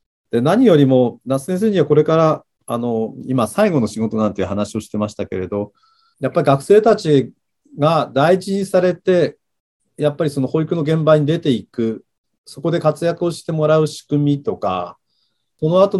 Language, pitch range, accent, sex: Japanese, 110-155 Hz, native, male